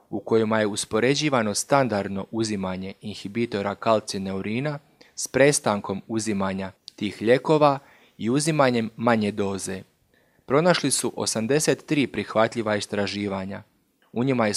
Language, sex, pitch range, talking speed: Croatian, male, 105-130 Hz, 105 wpm